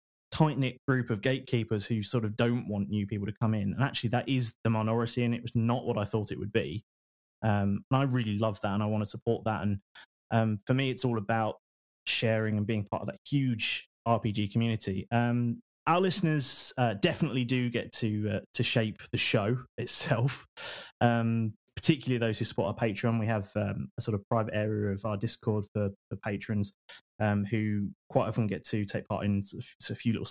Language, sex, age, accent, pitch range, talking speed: English, male, 20-39, British, 105-130 Hz, 210 wpm